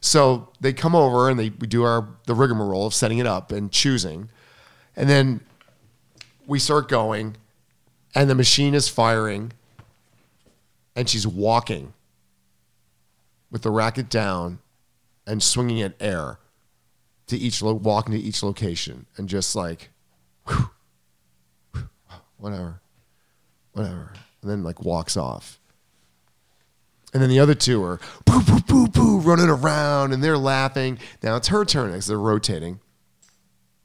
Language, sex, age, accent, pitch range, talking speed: English, male, 40-59, American, 85-130 Hz, 140 wpm